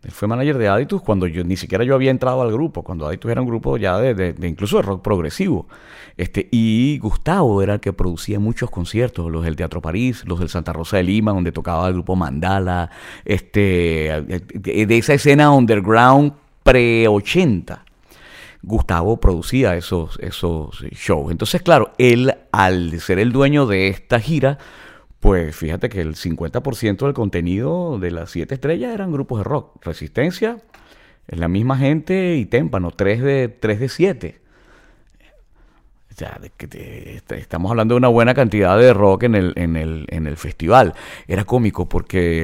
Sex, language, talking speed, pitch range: male, Spanish, 175 wpm, 85-125 Hz